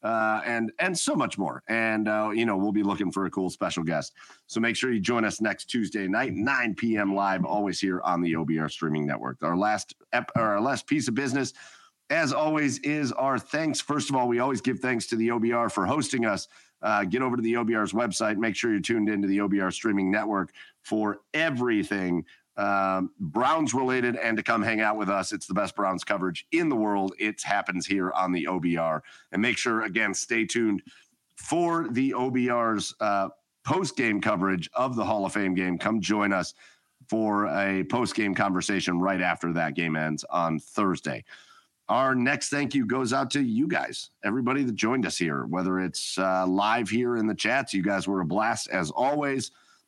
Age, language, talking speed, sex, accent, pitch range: 40-59, English, 205 wpm, male, American, 95-120 Hz